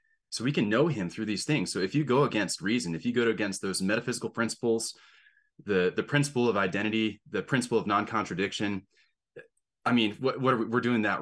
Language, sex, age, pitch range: English, male, 20-39, 95-125 Hz